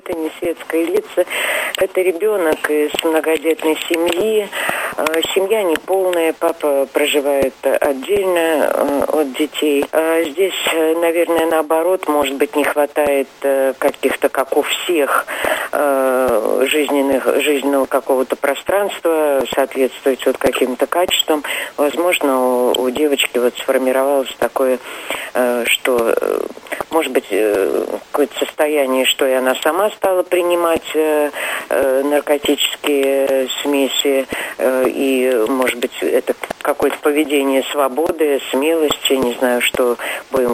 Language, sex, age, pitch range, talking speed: Russian, female, 40-59, 130-165 Hz, 100 wpm